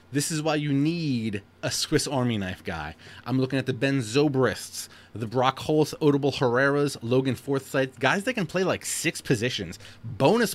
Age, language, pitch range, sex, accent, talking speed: 20-39, English, 105-145 Hz, male, American, 175 wpm